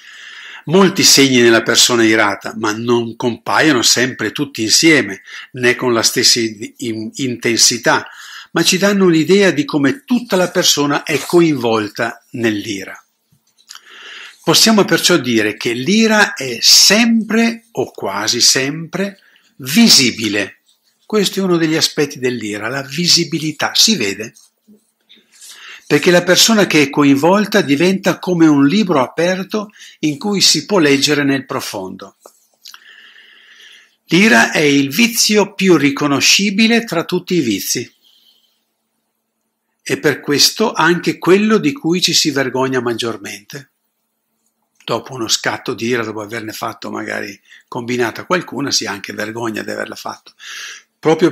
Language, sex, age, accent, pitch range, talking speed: Italian, male, 50-69, native, 125-195 Hz, 125 wpm